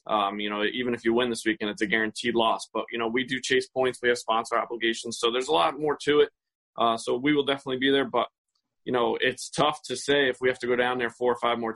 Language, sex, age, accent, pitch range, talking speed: English, male, 20-39, American, 120-140 Hz, 285 wpm